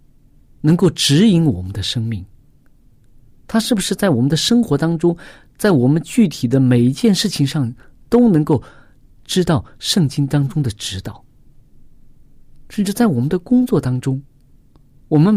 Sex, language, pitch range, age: male, Chinese, 120-170 Hz, 50-69